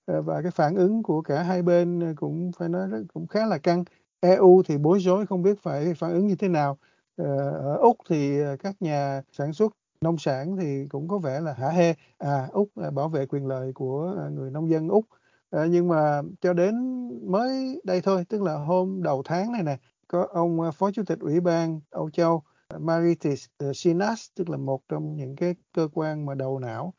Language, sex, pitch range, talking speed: Vietnamese, male, 140-180 Hz, 200 wpm